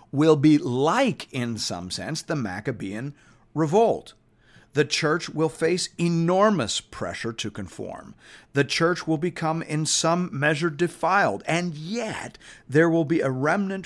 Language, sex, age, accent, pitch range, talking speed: English, male, 50-69, American, 115-155 Hz, 140 wpm